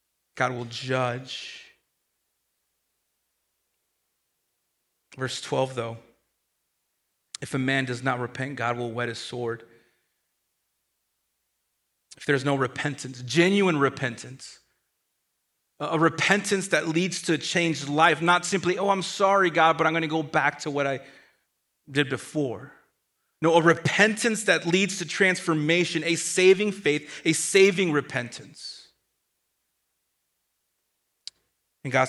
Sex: male